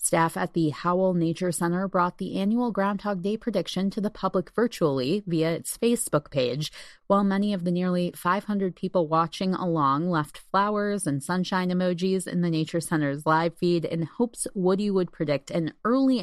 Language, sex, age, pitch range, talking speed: English, female, 30-49, 165-225 Hz, 175 wpm